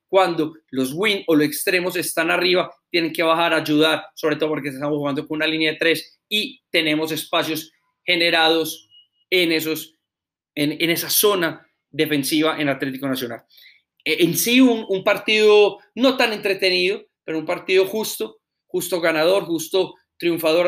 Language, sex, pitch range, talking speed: Spanish, male, 155-185 Hz, 150 wpm